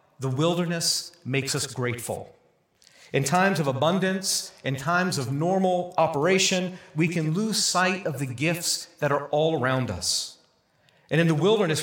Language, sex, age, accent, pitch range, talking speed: English, male, 40-59, American, 130-175 Hz, 150 wpm